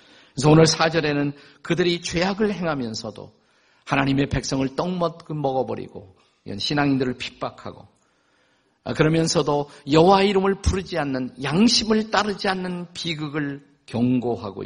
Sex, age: male, 50-69